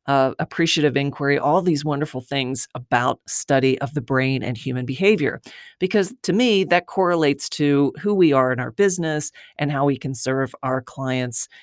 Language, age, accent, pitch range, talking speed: English, 40-59, American, 135-160 Hz, 175 wpm